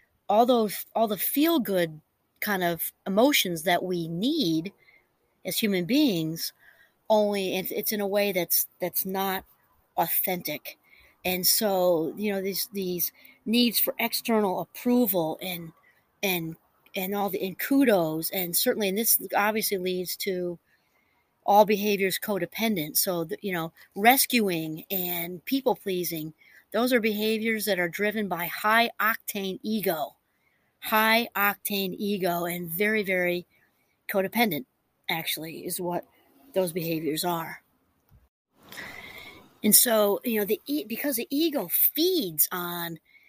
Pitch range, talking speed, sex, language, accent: 175-220 Hz, 125 wpm, female, English, American